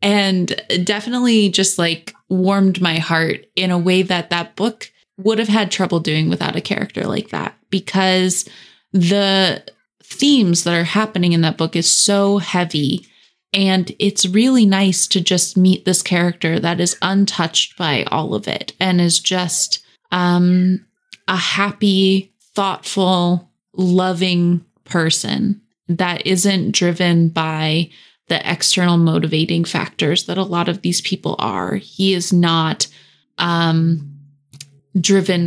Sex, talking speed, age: female, 135 wpm, 20-39